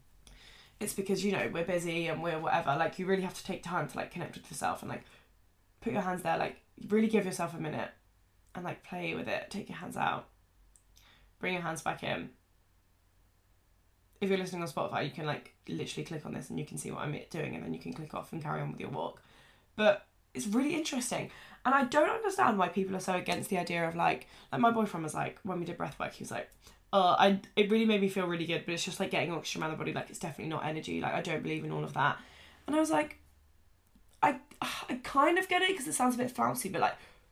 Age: 10-29